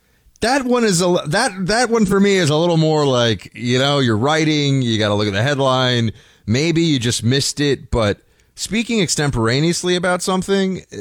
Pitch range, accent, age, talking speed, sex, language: 100-145 Hz, American, 30-49, 190 wpm, male, English